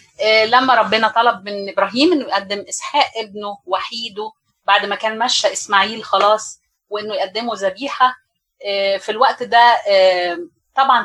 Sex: female